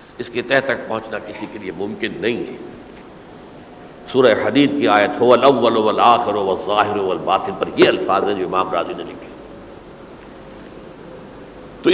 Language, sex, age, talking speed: Urdu, male, 60-79, 110 wpm